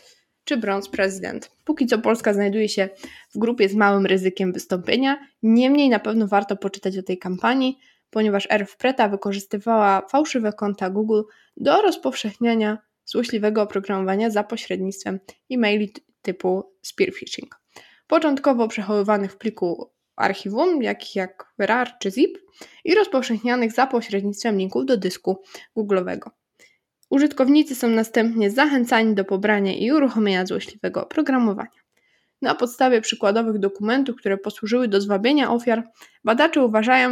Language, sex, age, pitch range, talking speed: Polish, female, 20-39, 200-250 Hz, 125 wpm